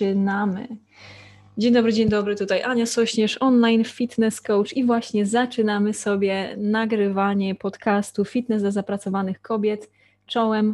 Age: 20-39